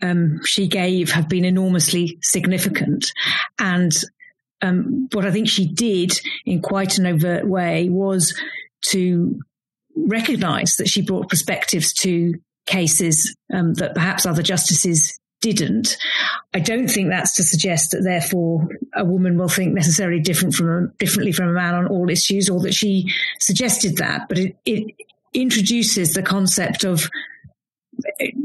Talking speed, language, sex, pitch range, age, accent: 145 wpm, English, female, 175-210 Hz, 40-59, British